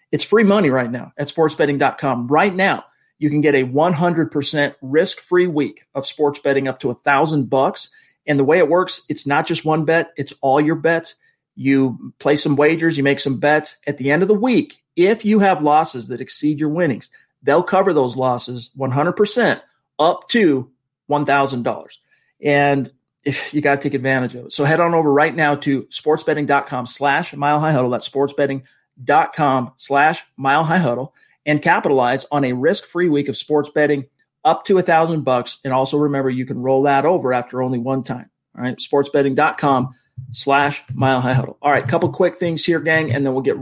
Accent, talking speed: American, 190 wpm